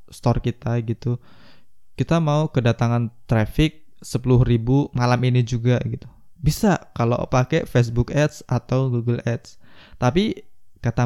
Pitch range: 110-130 Hz